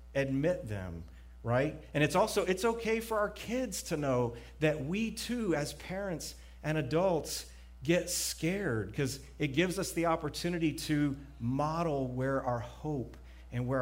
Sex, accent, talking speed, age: male, American, 150 wpm, 40-59